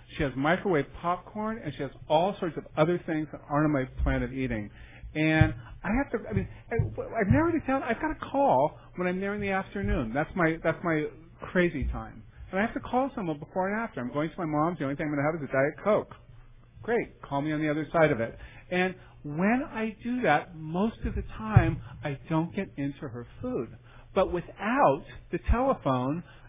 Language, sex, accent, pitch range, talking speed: English, male, American, 125-190 Hz, 215 wpm